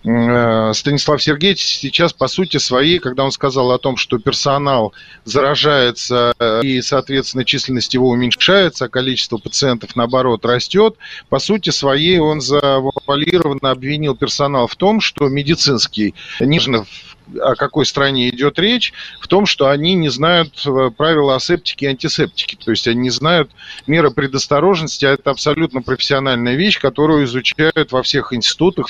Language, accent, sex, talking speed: Russian, native, male, 140 wpm